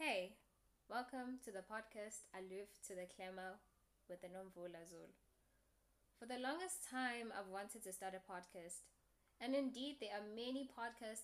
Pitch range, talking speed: 185-245 Hz, 155 wpm